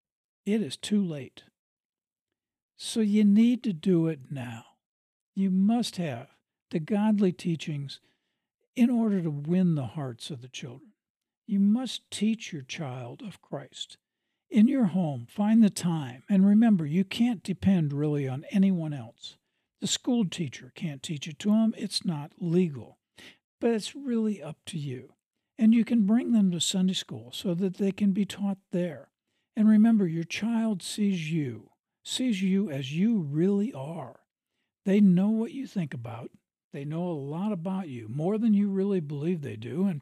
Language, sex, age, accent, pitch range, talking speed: English, male, 60-79, American, 155-210 Hz, 170 wpm